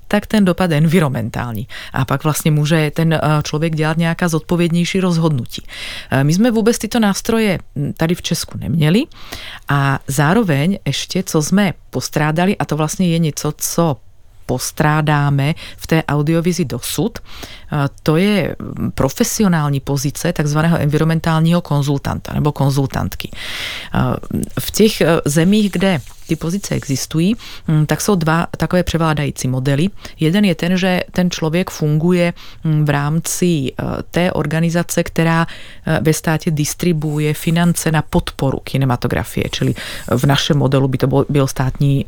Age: 30-49